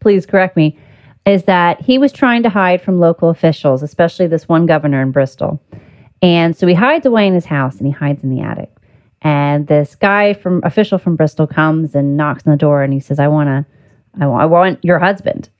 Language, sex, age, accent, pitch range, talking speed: English, female, 30-49, American, 145-205 Hz, 225 wpm